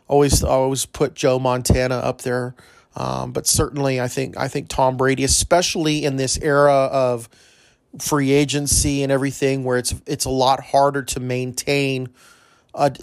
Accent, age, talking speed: American, 30-49, 155 wpm